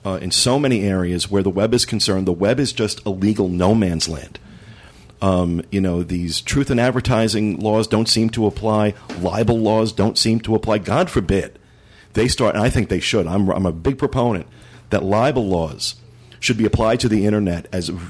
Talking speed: 215 wpm